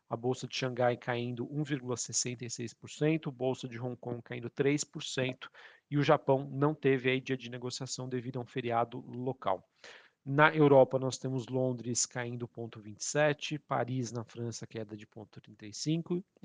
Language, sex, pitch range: Portuguese, male, 125-140 Hz